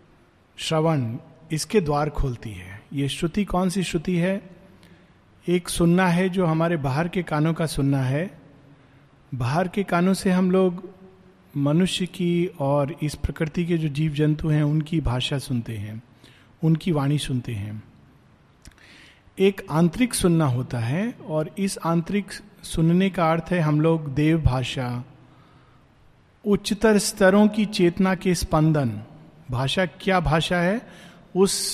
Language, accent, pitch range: Hindi, native, 150-190 Hz